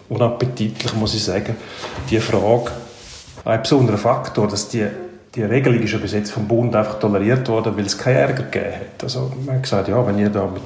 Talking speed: 210 wpm